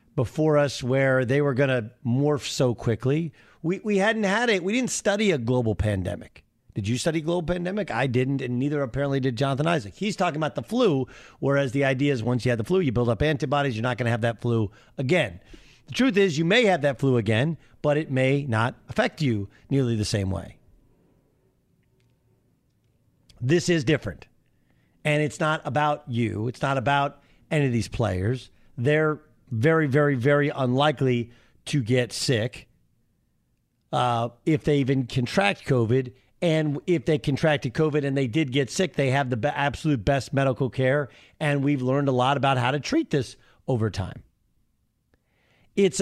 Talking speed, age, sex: 180 wpm, 50-69, male